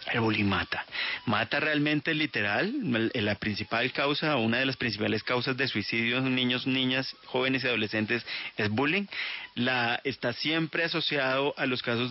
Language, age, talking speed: Spanish, 30-49, 160 wpm